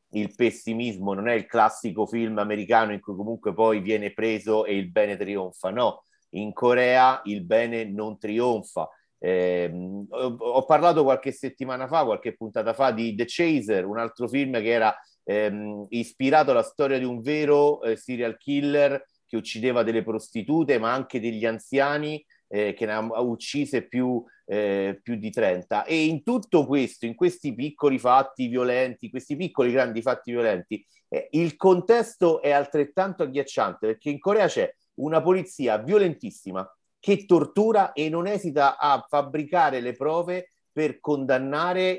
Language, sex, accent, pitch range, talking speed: Italian, male, native, 115-150 Hz, 155 wpm